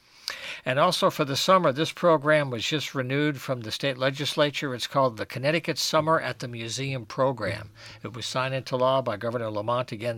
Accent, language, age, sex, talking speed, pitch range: American, English, 60-79, male, 190 wpm, 120-145 Hz